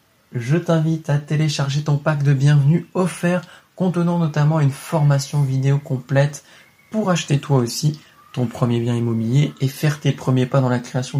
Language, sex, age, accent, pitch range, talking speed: French, male, 20-39, French, 130-155 Hz, 165 wpm